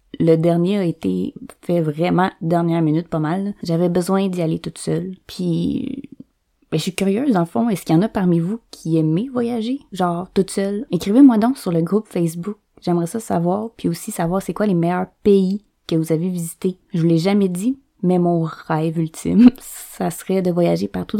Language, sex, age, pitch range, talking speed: French, female, 20-39, 170-225 Hz, 205 wpm